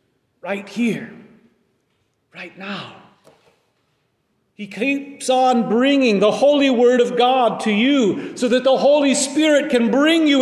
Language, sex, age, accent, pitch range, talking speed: English, male, 40-59, American, 175-235 Hz, 130 wpm